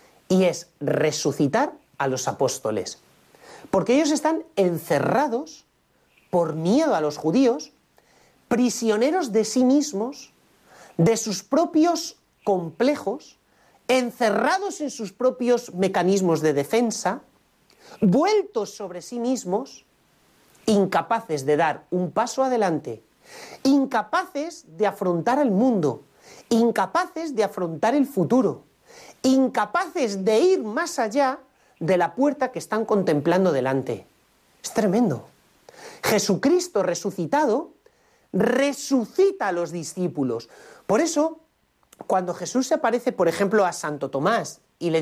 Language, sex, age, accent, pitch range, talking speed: Spanish, male, 40-59, Spanish, 180-265 Hz, 110 wpm